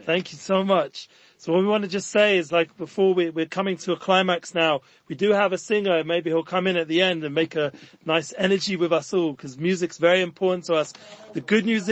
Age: 40-59